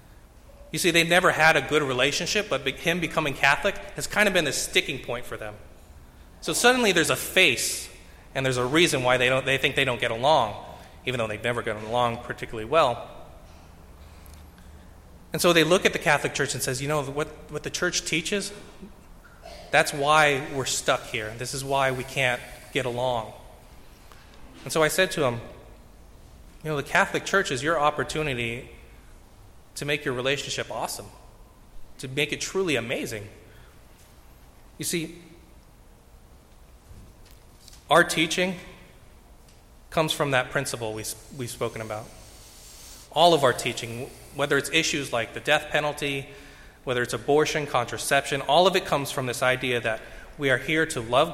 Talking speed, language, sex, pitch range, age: 160 wpm, English, male, 110-150 Hz, 20-39